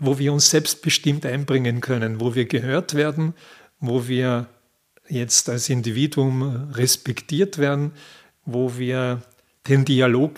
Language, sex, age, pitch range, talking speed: German, male, 50-69, 135-155 Hz, 120 wpm